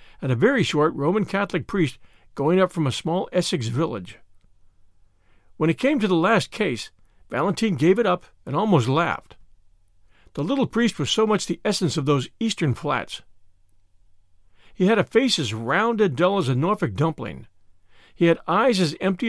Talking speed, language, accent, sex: 175 wpm, English, American, male